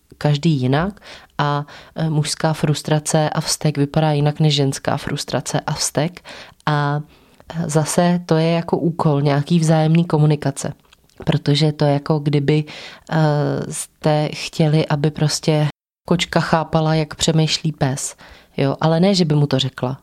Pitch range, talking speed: 150-165 Hz, 135 wpm